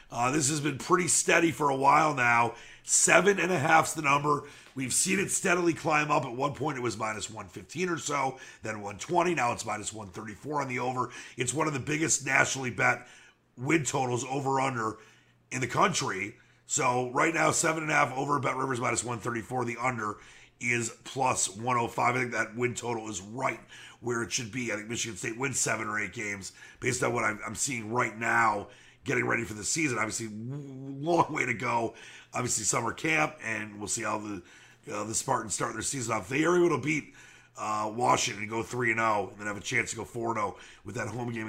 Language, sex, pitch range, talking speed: English, male, 110-145 Hz, 205 wpm